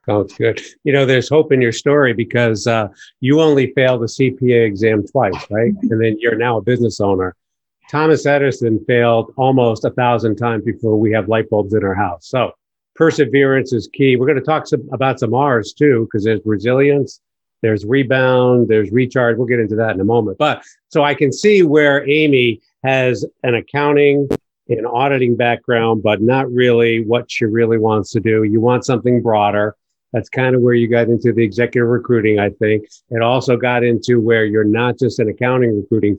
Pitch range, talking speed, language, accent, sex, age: 110-130 Hz, 195 wpm, English, American, male, 50-69